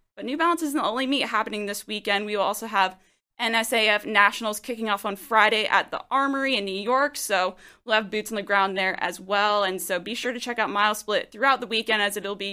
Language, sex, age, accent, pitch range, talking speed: English, female, 20-39, American, 210-265 Hz, 245 wpm